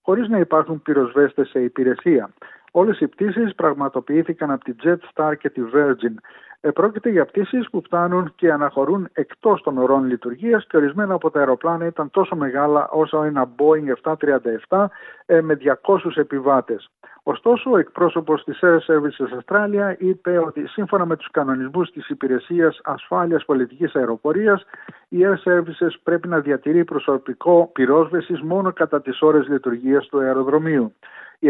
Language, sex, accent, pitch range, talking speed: Greek, male, native, 135-175 Hz, 150 wpm